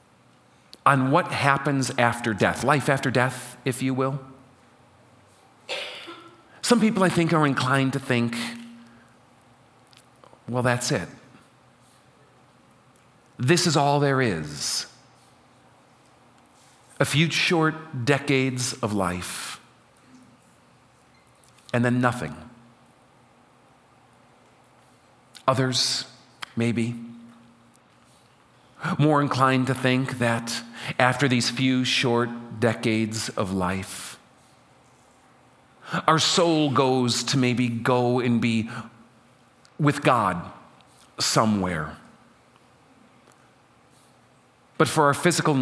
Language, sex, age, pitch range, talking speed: English, male, 50-69, 115-145 Hz, 85 wpm